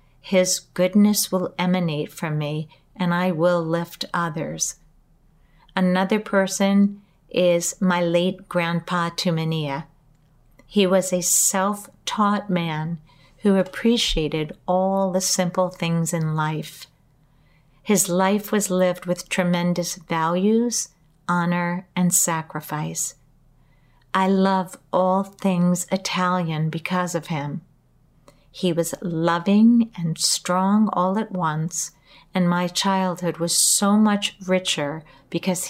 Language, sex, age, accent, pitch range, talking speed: English, female, 50-69, American, 160-190 Hz, 110 wpm